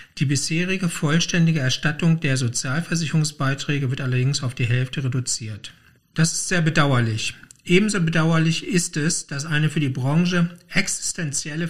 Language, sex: German, male